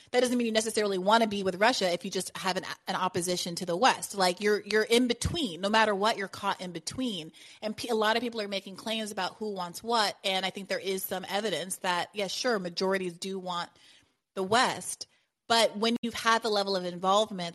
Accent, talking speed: American, 230 wpm